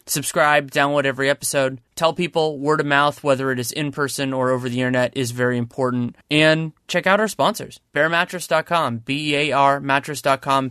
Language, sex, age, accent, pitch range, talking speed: English, male, 20-39, American, 130-160 Hz, 160 wpm